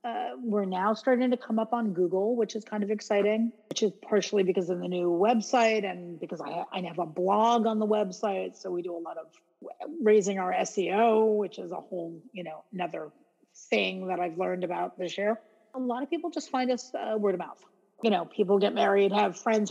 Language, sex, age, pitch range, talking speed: English, female, 40-59, 200-250 Hz, 220 wpm